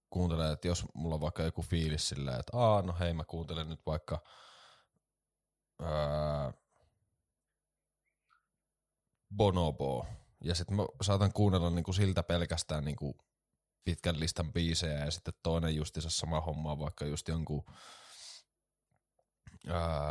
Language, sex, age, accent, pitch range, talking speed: Finnish, male, 20-39, native, 80-95 Hz, 120 wpm